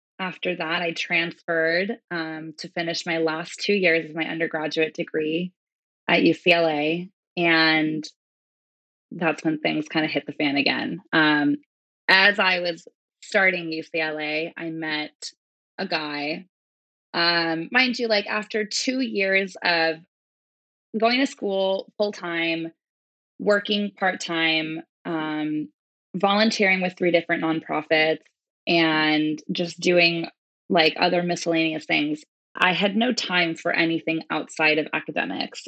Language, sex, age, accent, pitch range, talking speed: English, female, 20-39, American, 155-185 Hz, 125 wpm